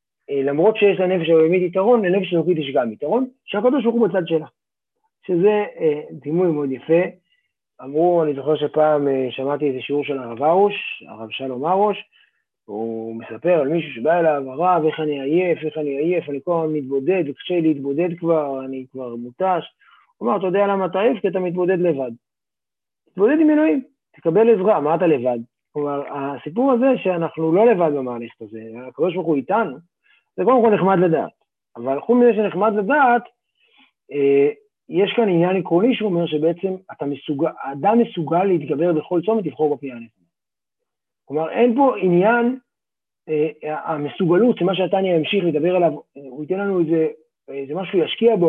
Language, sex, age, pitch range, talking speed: Hebrew, male, 30-49, 150-210 Hz, 155 wpm